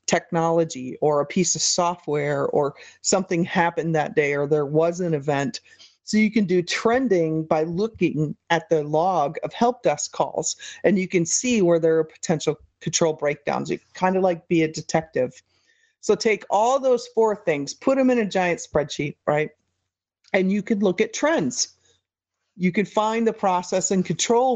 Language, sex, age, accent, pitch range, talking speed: English, female, 40-59, American, 160-210 Hz, 180 wpm